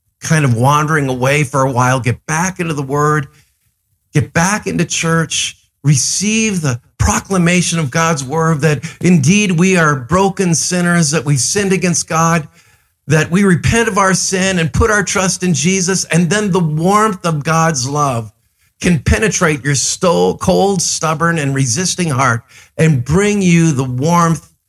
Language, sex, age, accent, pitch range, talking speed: English, male, 50-69, American, 140-190 Hz, 160 wpm